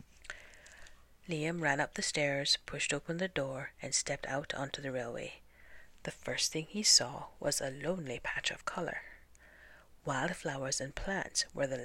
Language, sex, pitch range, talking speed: English, female, 135-175 Hz, 155 wpm